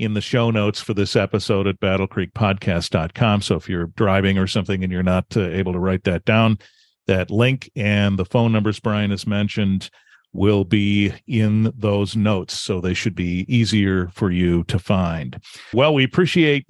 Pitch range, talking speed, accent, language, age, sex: 105-130 Hz, 175 wpm, American, English, 40-59, male